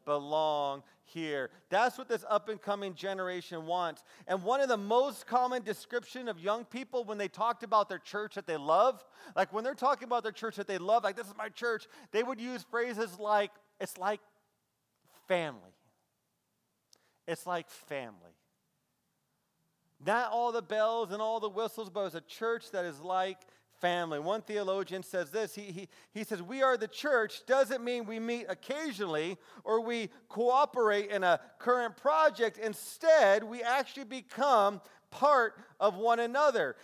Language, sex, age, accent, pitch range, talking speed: English, male, 40-59, American, 195-245 Hz, 170 wpm